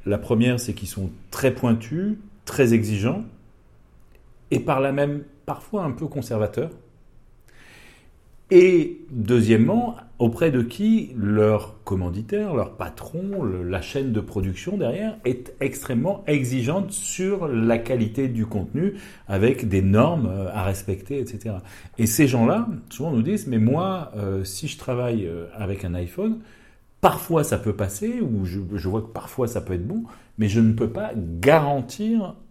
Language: French